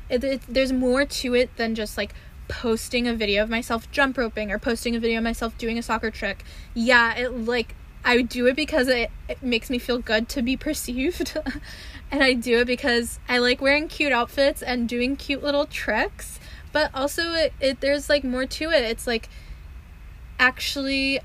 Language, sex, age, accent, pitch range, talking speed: English, female, 10-29, American, 230-260 Hz, 190 wpm